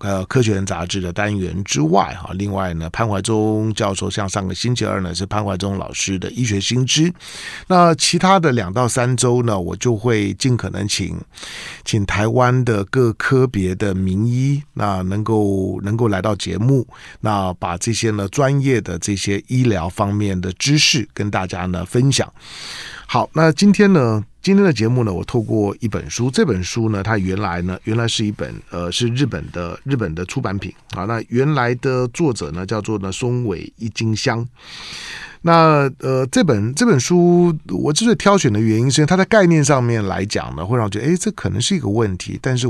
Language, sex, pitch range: Chinese, male, 95-130 Hz